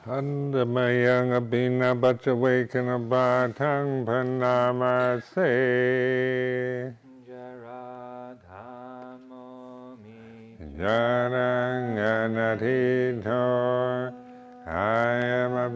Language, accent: English, American